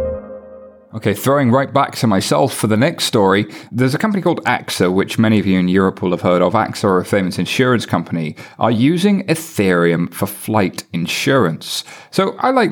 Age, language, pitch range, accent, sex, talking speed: 30-49, English, 95-135 Hz, British, male, 185 wpm